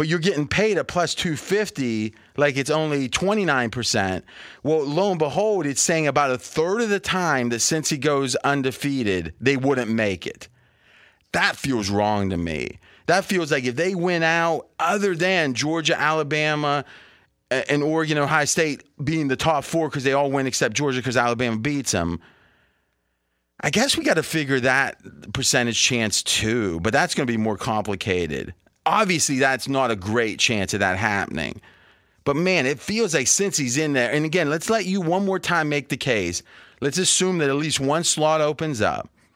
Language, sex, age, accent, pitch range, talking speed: English, male, 30-49, American, 120-160 Hz, 185 wpm